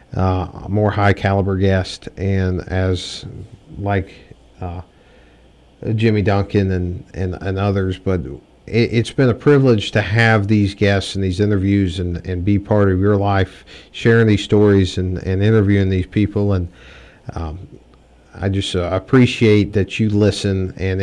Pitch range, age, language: 95-110 Hz, 50-69, English